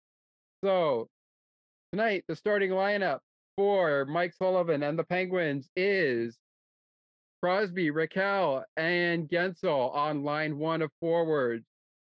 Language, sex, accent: English, male, American